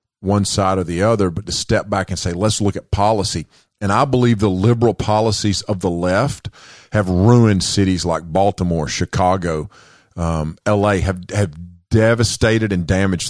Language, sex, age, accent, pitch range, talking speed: English, male, 40-59, American, 90-110 Hz, 165 wpm